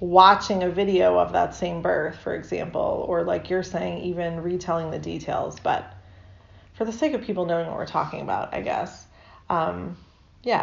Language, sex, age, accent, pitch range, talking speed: English, female, 30-49, American, 165-195 Hz, 180 wpm